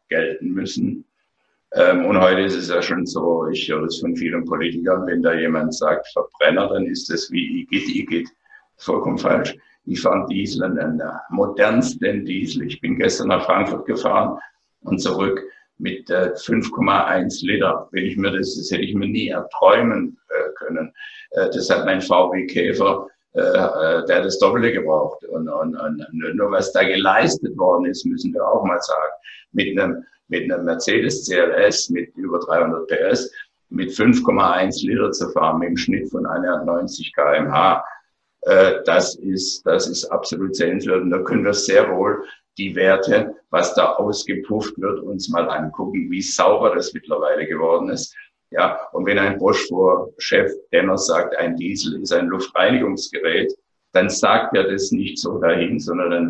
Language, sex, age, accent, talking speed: German, male, 60-79, German, 160 wpm